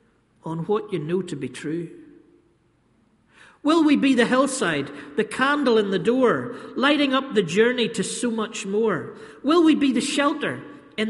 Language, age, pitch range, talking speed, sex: English, 50-69, 170-245 Hz, 170 wpm, male